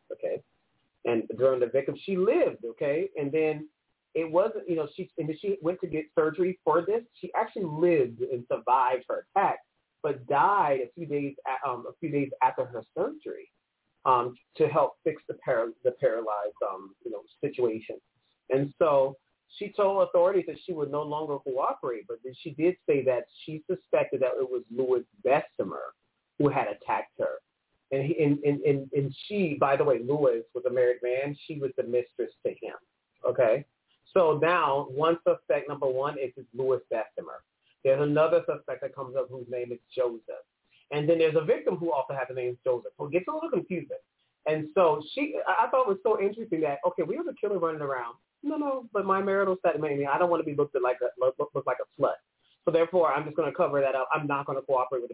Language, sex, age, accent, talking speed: English, male, 40-59, American, 210 wpm